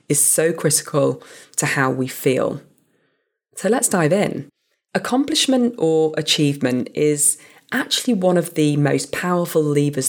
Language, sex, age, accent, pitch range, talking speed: English, female, 20-39, British, 140-180 Hz, 130 wpm